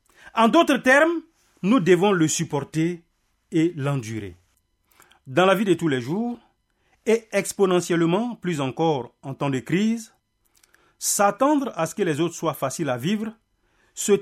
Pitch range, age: 145-225 Hz, 40-59